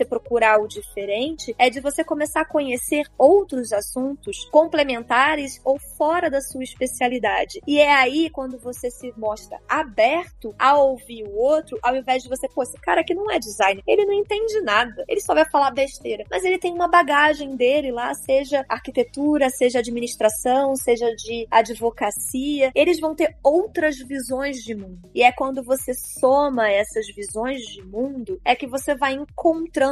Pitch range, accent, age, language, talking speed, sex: 235-305 Hz, Brazilian, 20-39, Portuguese, 170 wpm, female